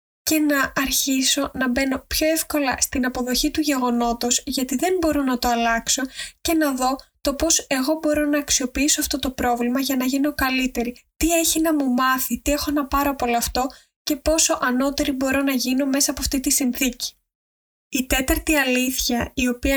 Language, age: Greek, 20-39